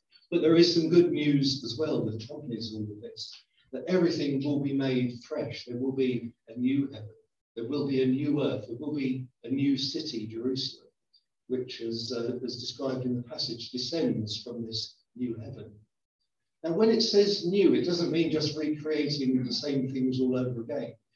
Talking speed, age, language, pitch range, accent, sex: 185 wpm, 50-69, English, 125-155 Hz, British, male